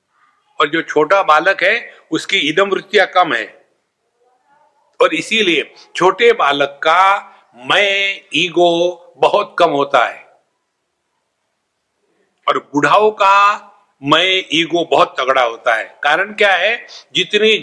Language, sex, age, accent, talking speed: English, male, 60-79, Indian, 115 wpm